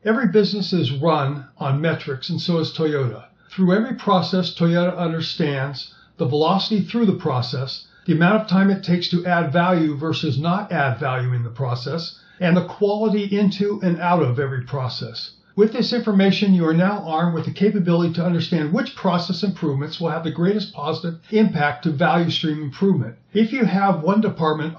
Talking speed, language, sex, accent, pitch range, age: 180 wpm, English, male, American, 155-195 Hz, 60-79